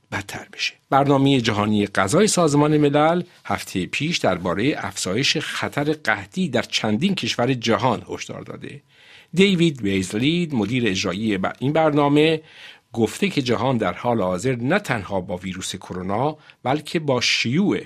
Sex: male